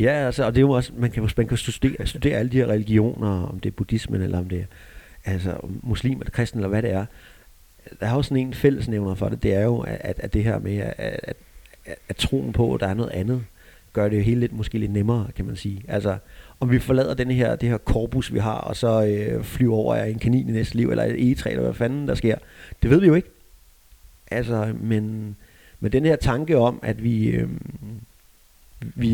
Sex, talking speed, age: male, 235 wpm, 30-49